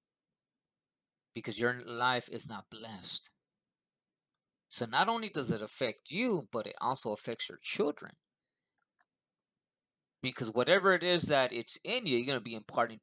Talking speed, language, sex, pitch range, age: 145 wpm, English, male, 115-130 Hz, 20-39